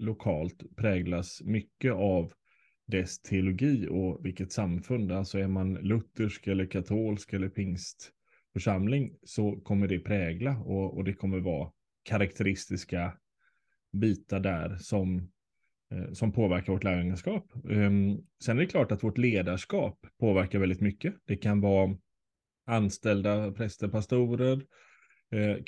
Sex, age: male, 20-39